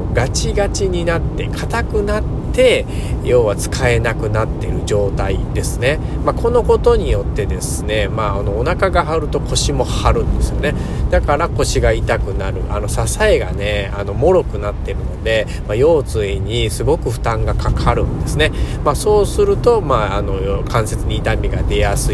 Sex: male